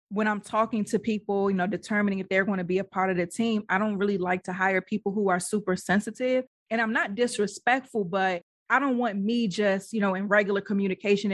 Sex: female